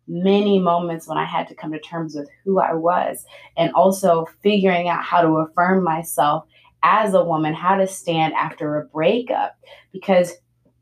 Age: 20-39